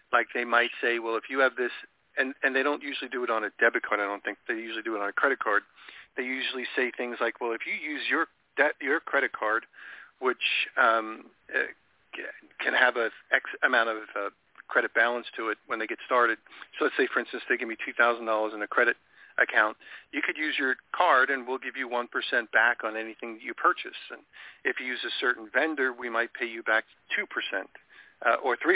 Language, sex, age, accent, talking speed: English, male, 40-59, American, 225 wpm